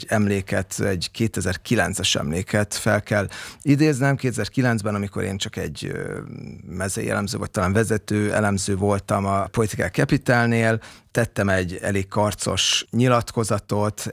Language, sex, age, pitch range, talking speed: Hungarian, male, 30-49, 100-125 Hz, 110 wpm